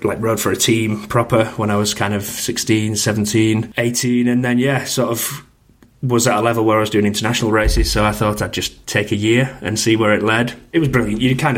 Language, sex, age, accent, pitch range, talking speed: English, male, 30-49, British, 105-120 Hz, 245 wpm